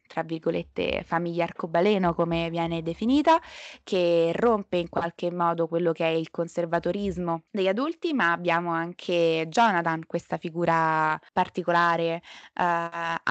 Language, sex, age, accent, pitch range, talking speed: Italian, female, 20-39, native, 170-210 Hz, 120 wpm